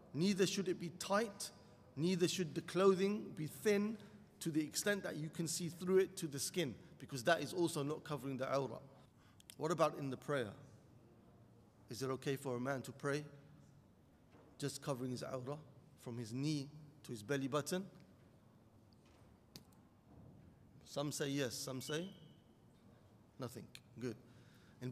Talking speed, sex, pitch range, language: 150 wpm, male, 140-180 Hz, English